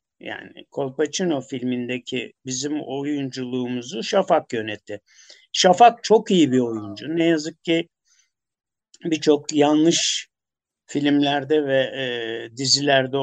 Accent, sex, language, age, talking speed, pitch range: native, male, Turkish, 60-79, 90 wpm, 130-180 Hz